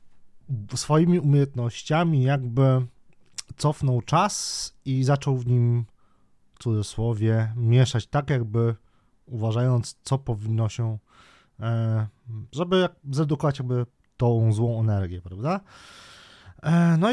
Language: Polish